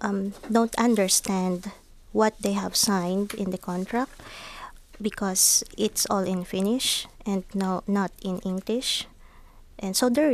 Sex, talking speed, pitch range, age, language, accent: female, 135 wpm, 190-225 Hz, 20-39, Finnish, Filipino